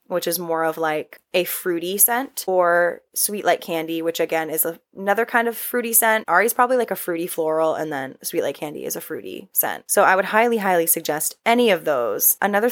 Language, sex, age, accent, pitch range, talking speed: English, female, 10-29, American, 165-210 Hz, 210 wpm